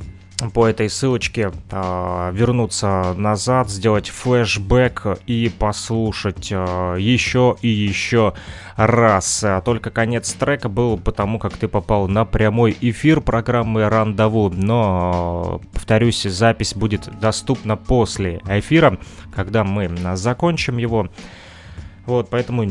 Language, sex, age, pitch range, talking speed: Russian, male, 20-39, 95-115 Hz, 110 wpm